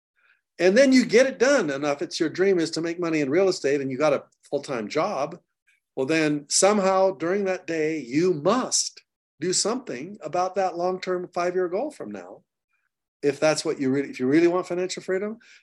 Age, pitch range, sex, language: 50-69, 135-185 Hz, male, English